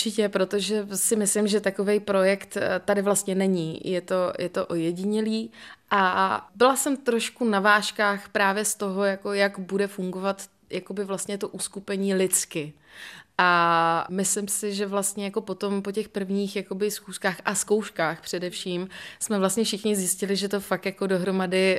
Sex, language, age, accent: female, Czech, 20-39, native